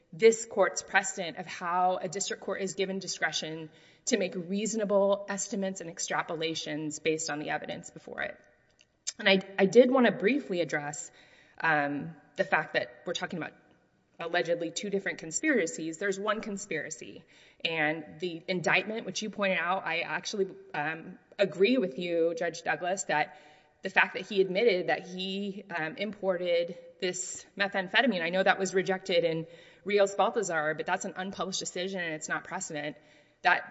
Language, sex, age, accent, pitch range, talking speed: English, female, 20-39, American, 160-200 Hz, 160 wpm